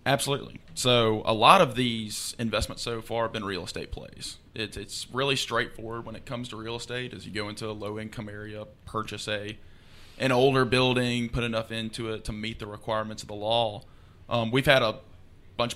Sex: male